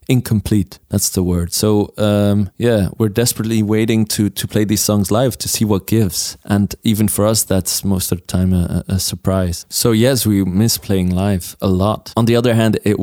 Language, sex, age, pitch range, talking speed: Greek, male, 20-39, 95-110 Hz, 205 wpm